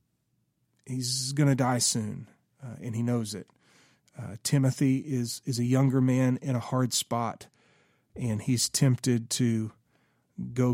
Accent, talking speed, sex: American, 140 wpm, male